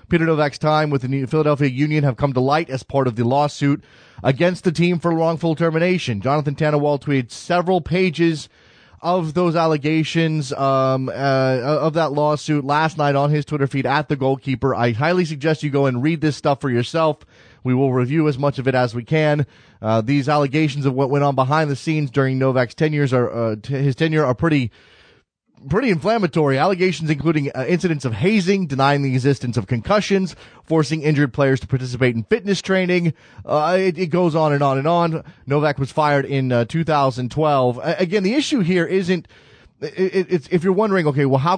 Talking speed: 190 wpm